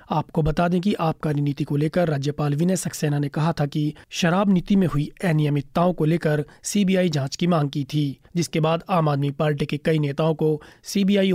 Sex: male